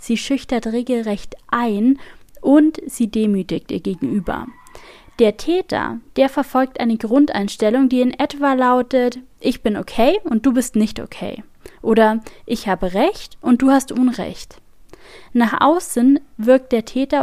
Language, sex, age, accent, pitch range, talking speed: German, female, 20-39, German, 215-270 Hz, 140 wpm